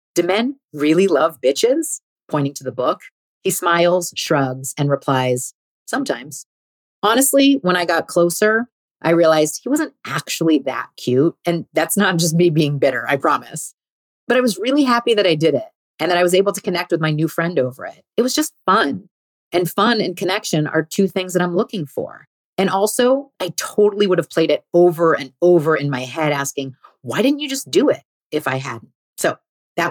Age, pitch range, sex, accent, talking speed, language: 30-49, 140-195 Hz, female, American, 195 wpm, English